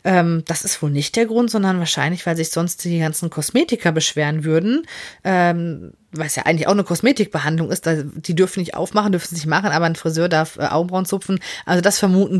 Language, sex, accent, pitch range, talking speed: Finnish, female, German, 150-185 Hz, 200 wpm